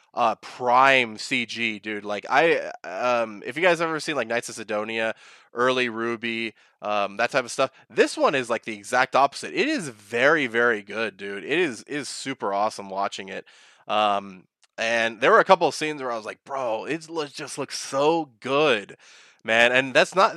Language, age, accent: English, 20-39, American